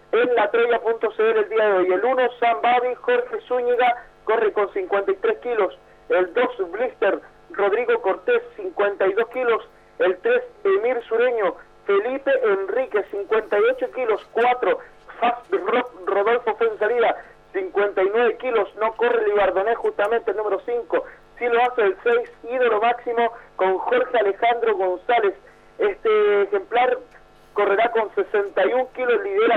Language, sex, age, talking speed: Spanish, male, 40-59, 130 wpm